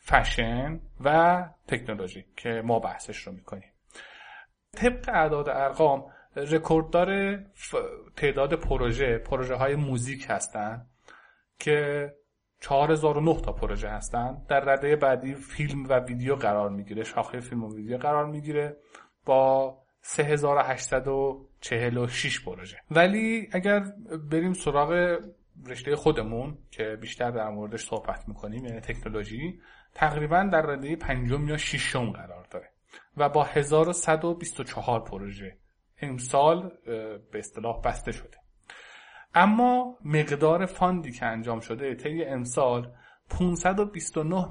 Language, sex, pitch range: Persian, male, 120-160 Hz